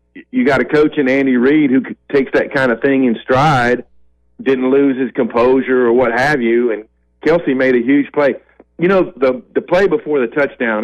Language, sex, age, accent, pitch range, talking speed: English, male, 40-59, American, 110-140 Hz, 205 wpm